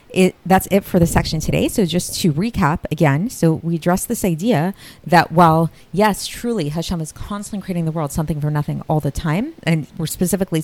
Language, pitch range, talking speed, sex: English, 150-185 Hz, 200 wpm, female